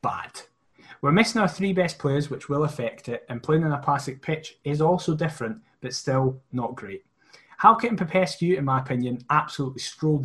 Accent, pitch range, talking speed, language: British, 125-155 Hz, 185 wpm, English